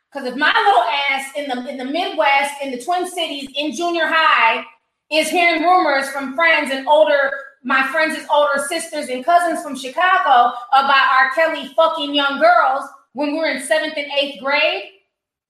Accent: American